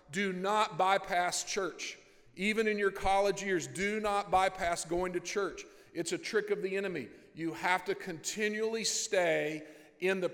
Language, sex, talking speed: English, male, 165 wpm